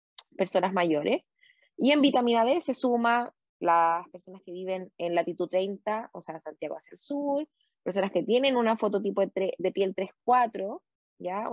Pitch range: 185-250 Hz